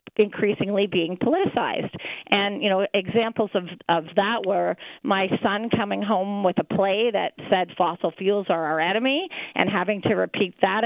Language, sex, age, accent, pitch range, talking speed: English, female, 40-59, American, 185-230 Hz, 165 wpm